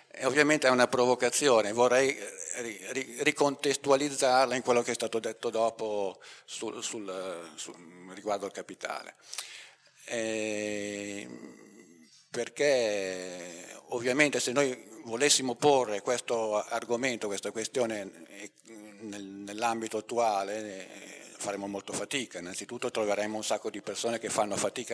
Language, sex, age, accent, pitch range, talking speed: Italian, male, 50-69, native, 100-125 Hz, 95 wpm